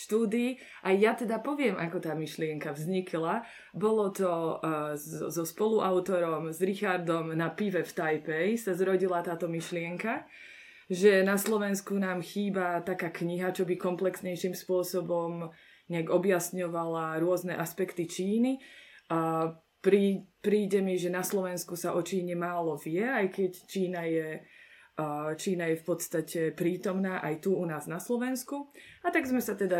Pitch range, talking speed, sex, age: 170-200 Hz, 140 wpm, female, 20-39